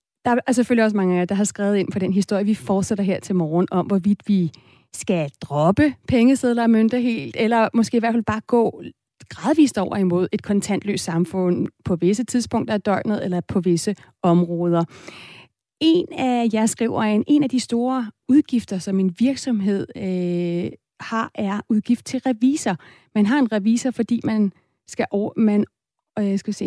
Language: Danish